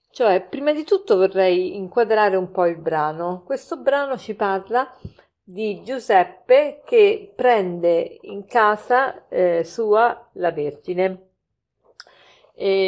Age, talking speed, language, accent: 50-69, 115 wpm, Italian, native